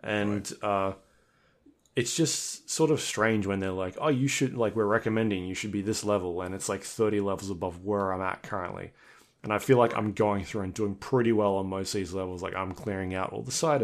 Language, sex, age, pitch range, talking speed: English, male, 20-39, 95-115 Hz, 235 wpm